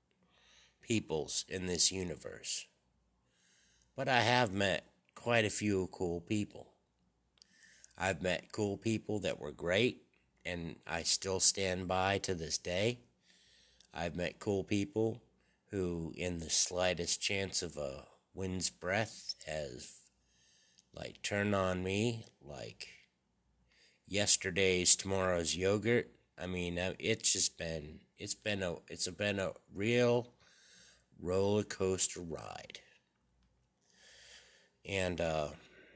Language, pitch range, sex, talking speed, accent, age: English, 80-100 Hz, male, 110 wpm, American, 60-79